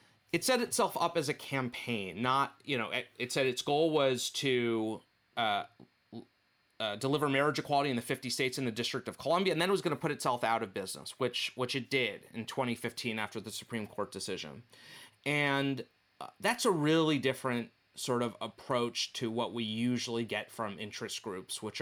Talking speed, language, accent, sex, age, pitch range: 195 wpm, English, American, male, 30-49, 120-150 Hz